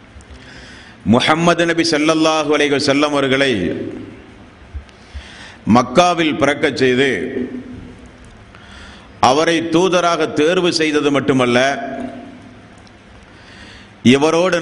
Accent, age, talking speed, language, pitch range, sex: native, 50-69, 60 wpm, Tamil, 120-160 Hz, male